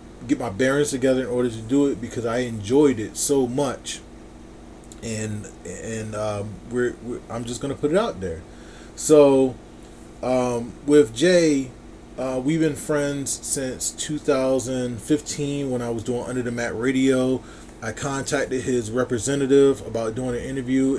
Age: 20-39